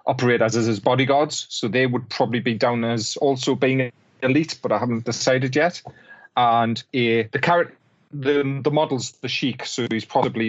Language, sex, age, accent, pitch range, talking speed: English, male, 30-49, British, 115-135 Hz, 175 wpm